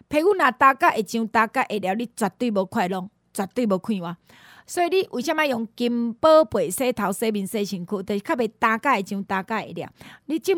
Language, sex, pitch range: Chinese, female, 210-290 Hz